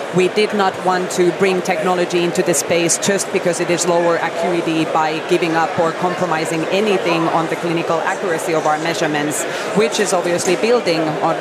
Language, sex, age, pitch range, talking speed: English, female, 30-49, 165-195 Hz, 180 wpm